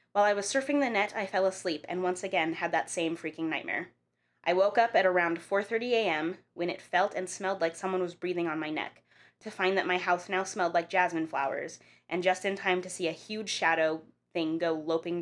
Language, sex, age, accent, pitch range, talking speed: English, female, 20-39, American, 165-200 Hz, 230 wpm